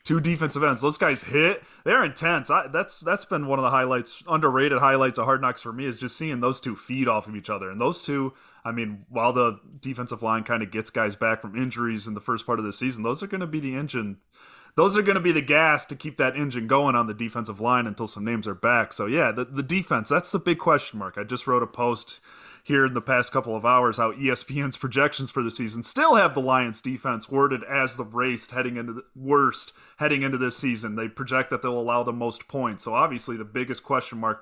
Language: English